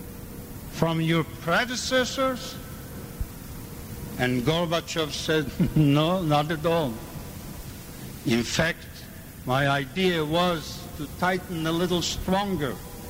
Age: 60-79